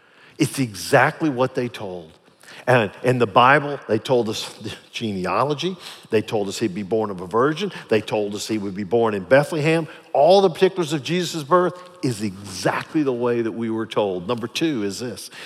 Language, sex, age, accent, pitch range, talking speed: English, male, 50-69, American, 110-145 Hz, 190 wpm